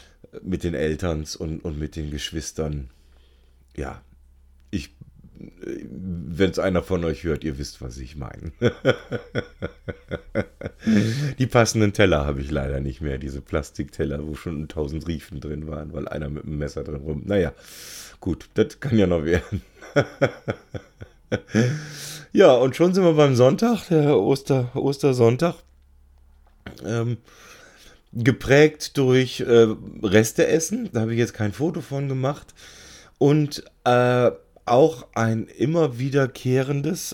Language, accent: English, German